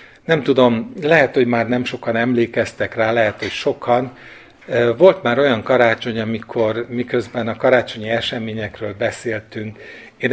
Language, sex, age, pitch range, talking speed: Hungarian, male, 50-69, 115-135 Hz, 135 wpm